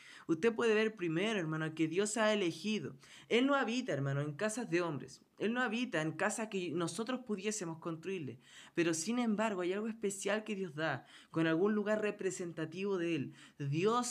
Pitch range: 160-215 Hz